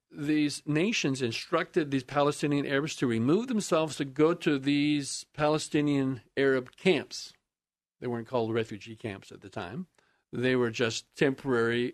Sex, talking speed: male, 140 wpm